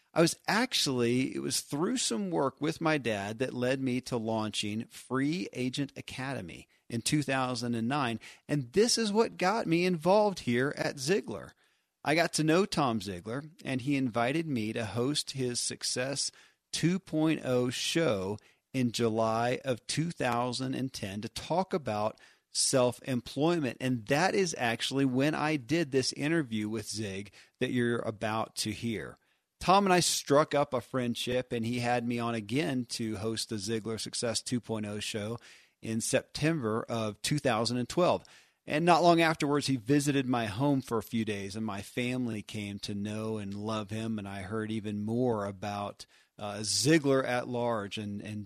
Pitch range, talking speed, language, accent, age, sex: 110-145 Hz, 160 wpm, English, American, 40-59, male